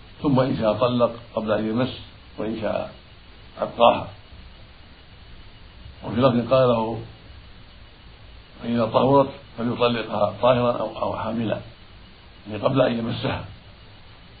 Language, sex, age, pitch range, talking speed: Arabic, male, 60-79, 105-120 Hz, 105 wpm